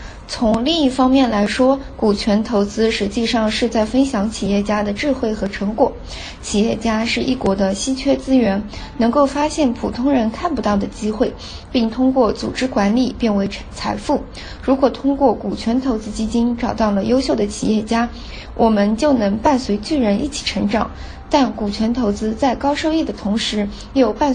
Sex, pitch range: female, 215-265 Hz